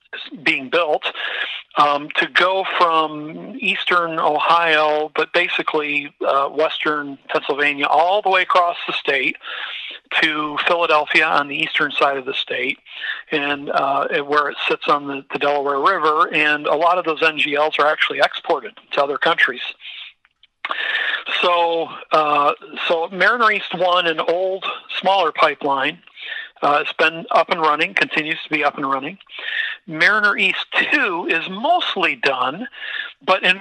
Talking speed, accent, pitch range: 145 wpm, American, 145-185 Hz